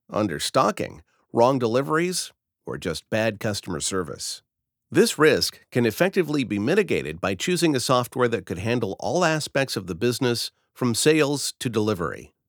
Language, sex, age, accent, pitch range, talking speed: English, male, 50-69, American, 110-150 Hz, 145 wpm